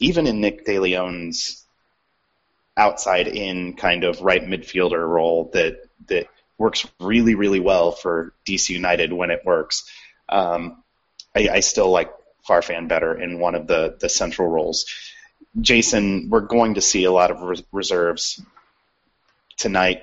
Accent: American